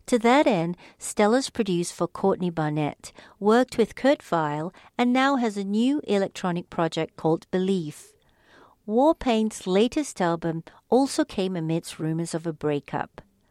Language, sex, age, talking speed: English, female, 50-69, 140 wpm